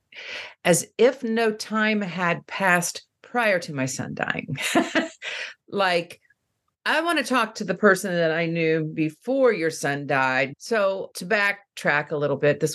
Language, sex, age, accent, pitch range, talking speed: English, female, 50-69, American, 155-230 Hz, 155 wpm